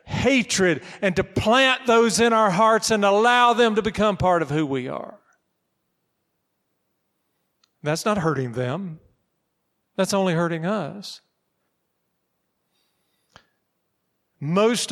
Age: 50-69